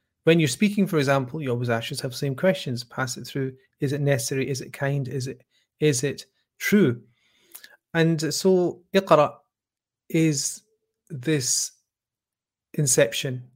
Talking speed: 140 wpm